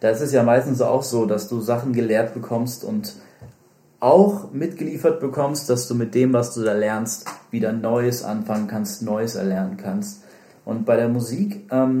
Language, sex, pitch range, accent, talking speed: German, male, 110-130 Hz, German, 175 wpm